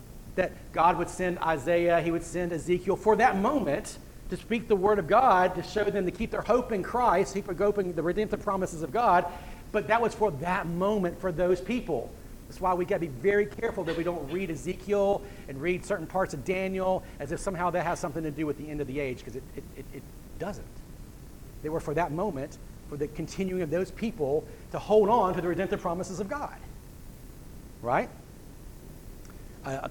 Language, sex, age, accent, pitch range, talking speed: English, male, 40-59, American, 170-205 Hz, 205 wpm